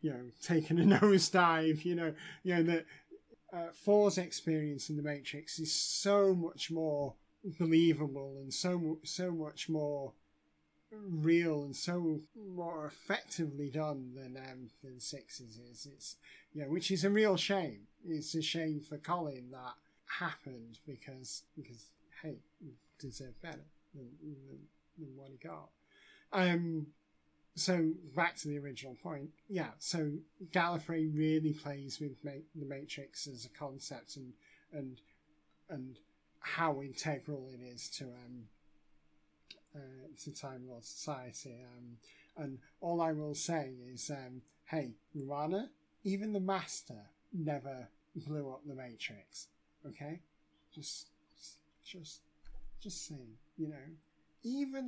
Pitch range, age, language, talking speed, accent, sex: 130-165 Hz, 30-49, English, 135 wpm, British, male